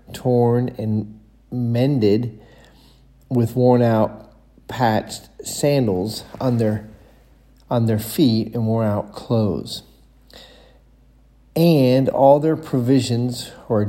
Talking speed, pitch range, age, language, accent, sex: 95 wpm, 110-130 Hz, 40-59, English, American, male